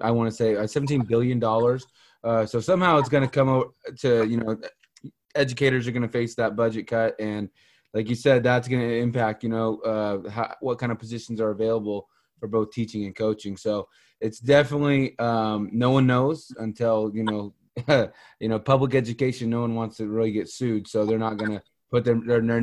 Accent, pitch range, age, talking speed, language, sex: American, 110-130 Hz, 20-39, 205 wpm, English, male